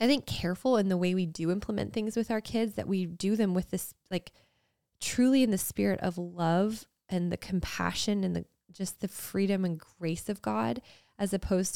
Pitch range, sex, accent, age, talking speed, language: 160-200 Hz, female, American, 20-39, 205 wpm, English